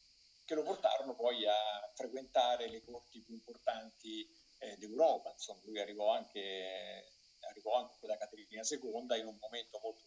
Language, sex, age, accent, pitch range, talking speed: Italian, male, 50-69, native, 105-150 Hz, 150 wpm